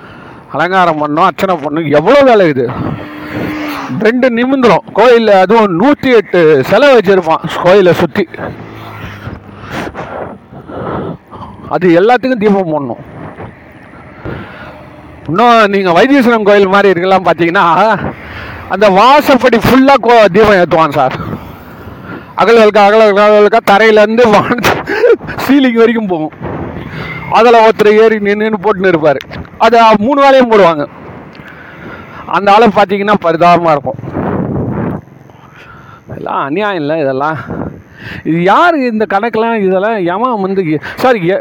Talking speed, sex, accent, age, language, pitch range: 65 wpm, male, native, 40-59, Tamil, 170-230 Hz